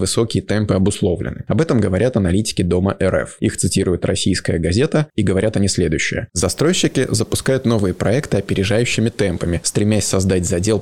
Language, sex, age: Russian, male, 20-39